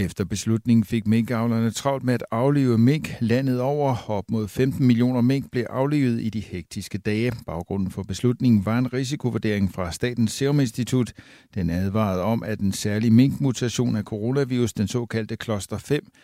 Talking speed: 170 wpm